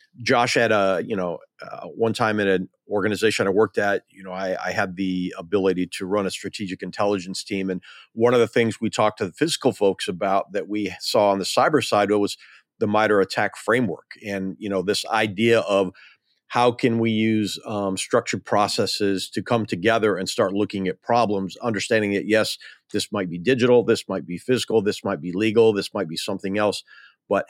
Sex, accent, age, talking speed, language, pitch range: male, American, 40-59, 205 wpm, English, 95-115 Hz